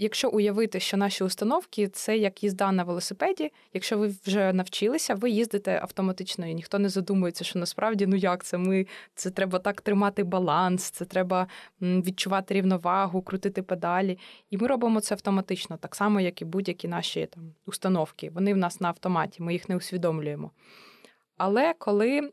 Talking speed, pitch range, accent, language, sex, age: 165 wpm, 185-220 Hz, native, Ukrainian, female, 20-39